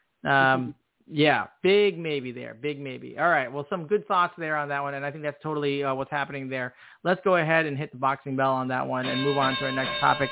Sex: male